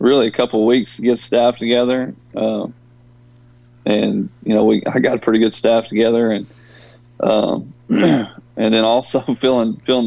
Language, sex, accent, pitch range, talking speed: English, male, American, 110-120 Hz, 165 wpm